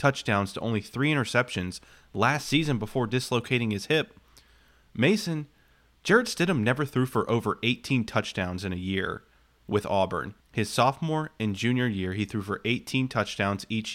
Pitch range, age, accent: 105-150 Hz, 30-49, American